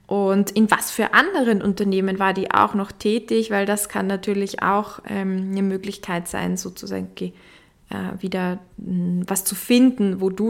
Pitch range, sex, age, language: 195-245 Hz, female, 20-39, German